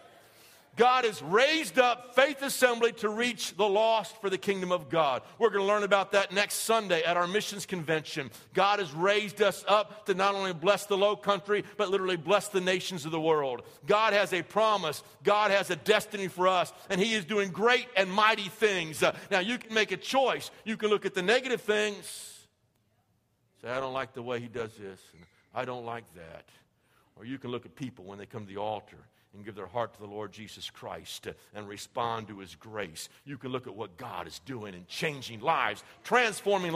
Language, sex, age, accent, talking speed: English, male, 50-69, American, 210 wpm